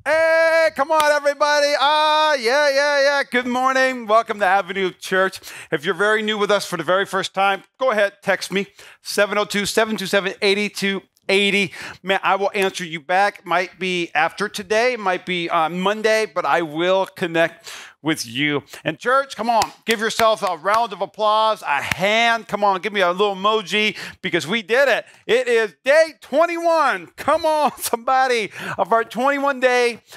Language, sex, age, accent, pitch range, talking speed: English, male, 40-59, American, 185-235 Hz, 170 wpm